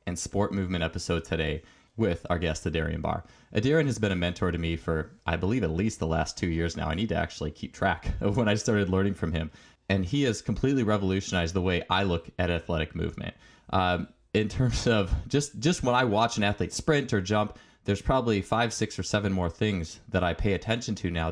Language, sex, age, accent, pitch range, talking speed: English, male, 20-39, American, 90-115 Hz, 225 wpm